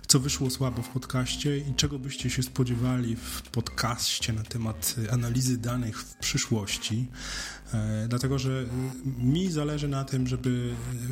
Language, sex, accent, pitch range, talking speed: Polish, male, native, 115-130 Hz, 135 wpm